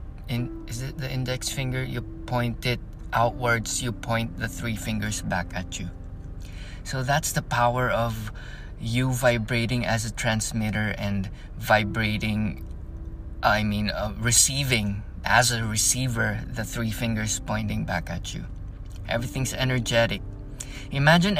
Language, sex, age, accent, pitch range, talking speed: English, male, 20-39, Filipino, 110-130 Hz, 130 wpm